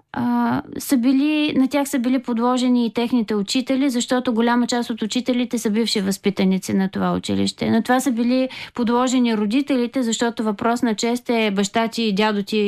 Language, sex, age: Bulgarian, female, 20-39